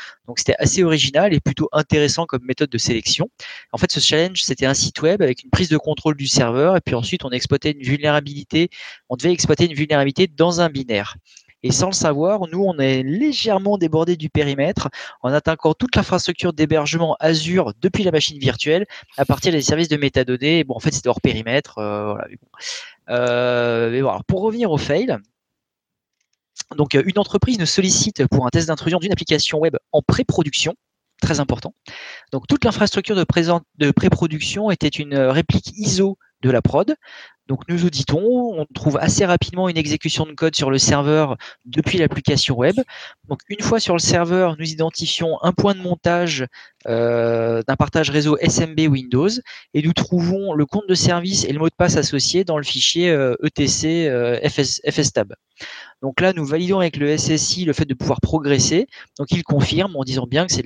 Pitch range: 135-175 Hz